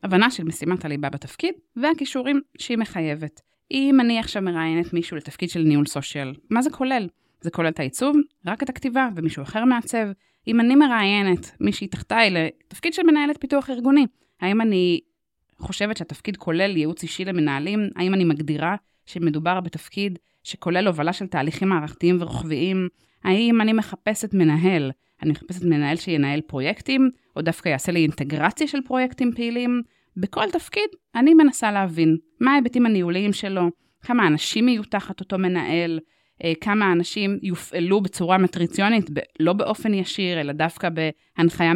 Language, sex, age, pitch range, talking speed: Hebrew, female, 20-39, 165-245 Hz, 150 wpm